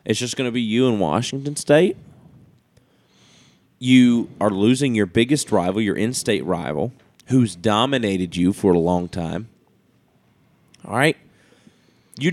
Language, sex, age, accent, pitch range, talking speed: English, male, 30-49, American, 105-140 Hz, 135 wpm